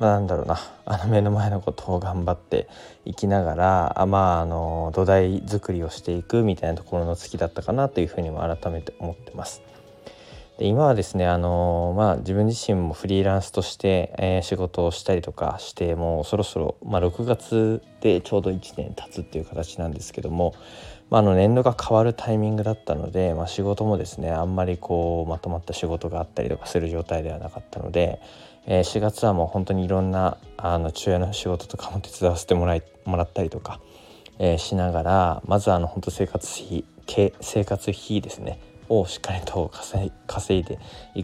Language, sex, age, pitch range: Japanese, male, 20-39, 85-100 Hz